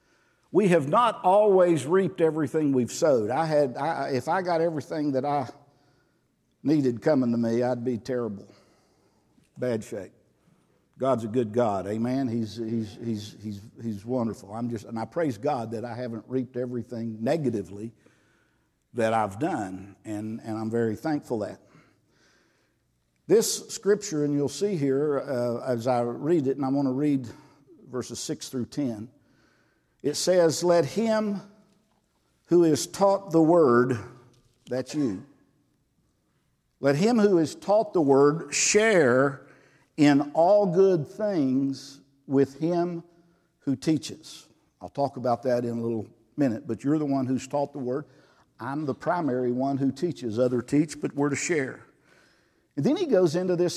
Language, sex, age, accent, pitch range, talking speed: English, male, 50-69, American, 120-160 Hz, 155 wpm